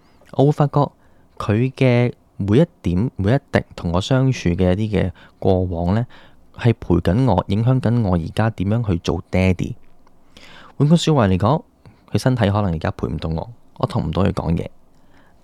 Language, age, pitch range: Chinese, 10-29, 90-120 Hz